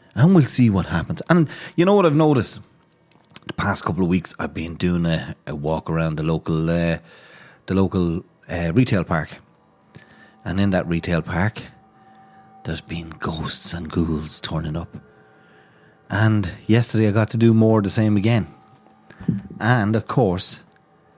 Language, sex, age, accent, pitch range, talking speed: English, male, 30-49, Irish, 85-115 Hz, 160 wpm